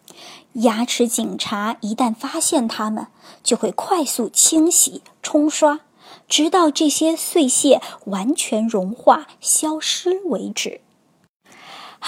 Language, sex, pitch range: Chinese, male, 225-300 Hz